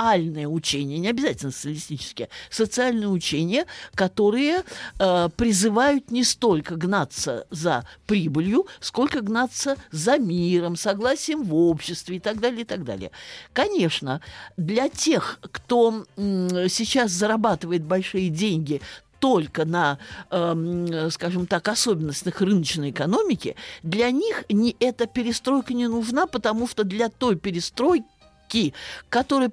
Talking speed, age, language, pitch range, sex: 120 wpm, 50-69, Russian, 170-235 Hz, male